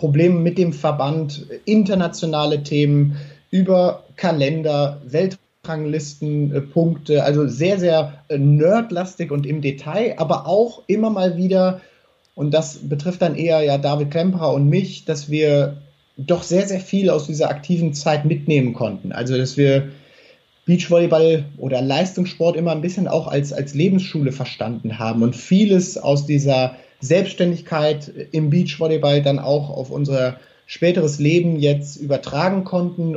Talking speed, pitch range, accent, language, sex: 135 wpm, 145-180 Hz, German, German, male